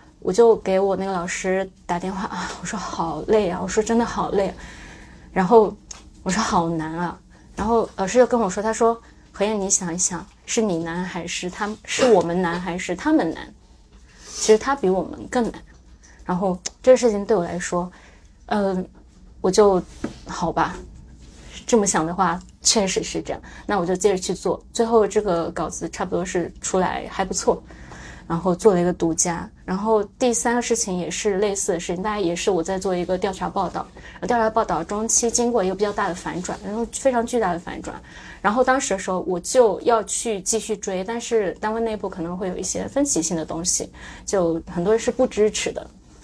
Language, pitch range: Chinese, 180-225 Hz